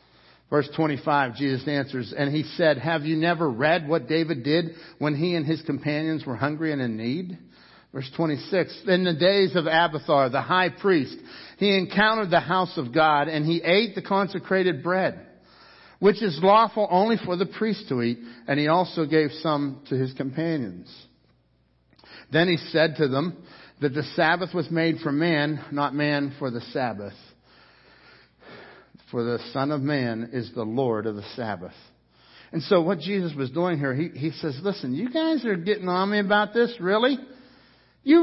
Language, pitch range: English, 145-210 Hz